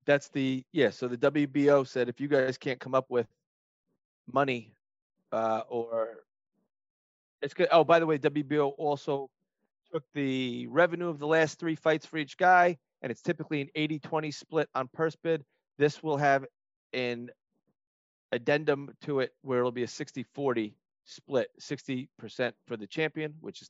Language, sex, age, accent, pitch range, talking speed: English, male, 30-49, American, 130-155 Hz, 160 wpm